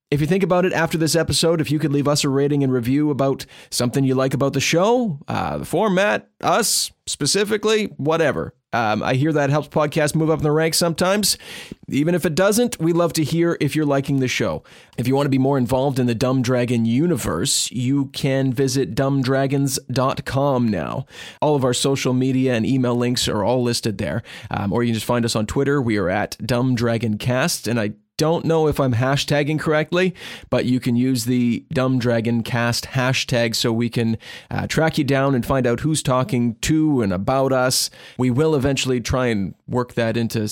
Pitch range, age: 125-155 Hz, 30-49